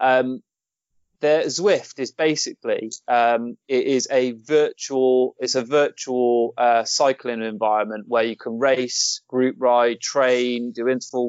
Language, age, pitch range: English, 20-39, 115-135 Hz